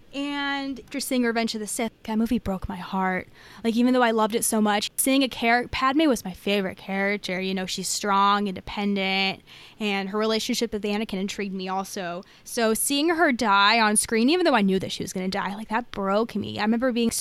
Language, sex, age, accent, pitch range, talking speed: English, female, 20-39, American, 190-230 Hz, 220 wpm